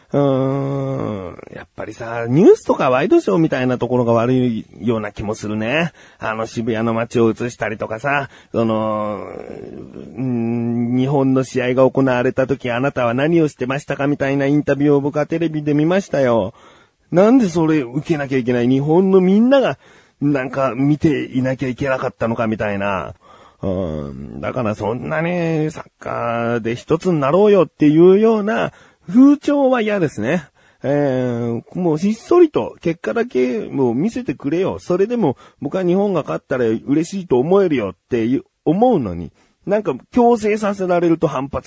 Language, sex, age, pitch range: Japanese, male, 40-59, 125-195 Hz